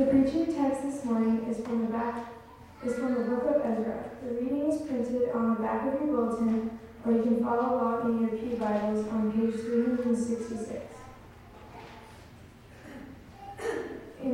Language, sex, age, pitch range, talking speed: English, female, 10-29, 220-245 Hz, 160 wpm